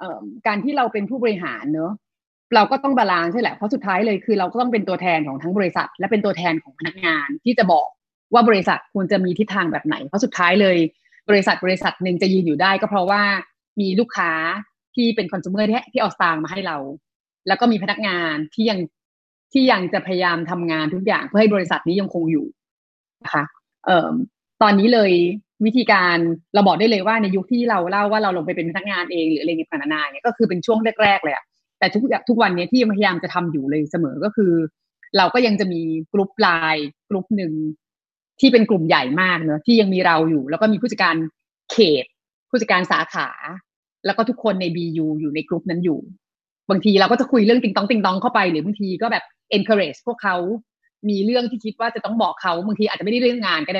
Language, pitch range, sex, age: Thai, 175-225 Hz, female, 20-39